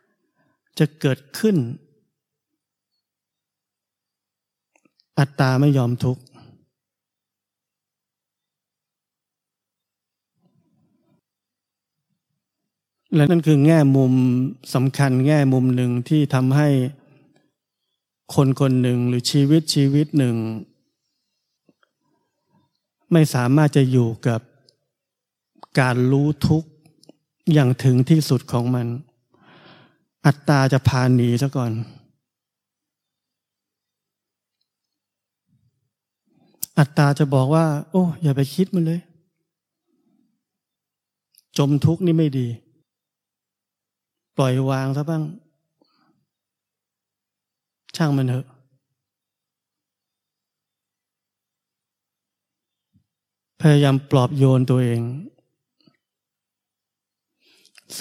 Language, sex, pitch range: Thai, male, 125-155 Hz